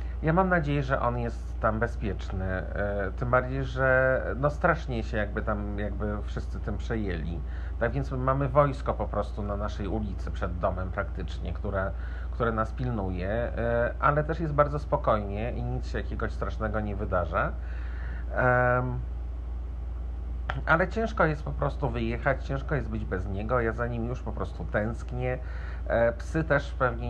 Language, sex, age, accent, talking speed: Polish, male, 50-69, native, 155 wpm